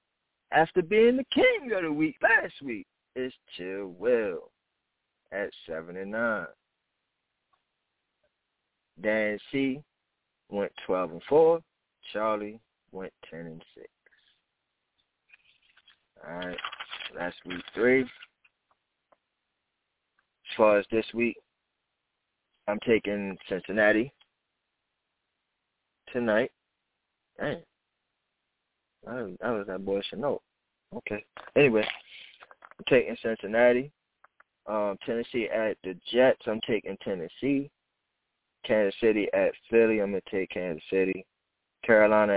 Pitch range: 95-120 Hz